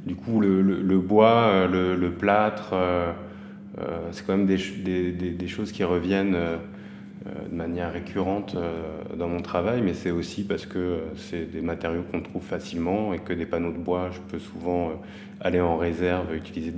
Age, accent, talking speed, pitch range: 30-49, French, 180 wpm, 85-100 Hz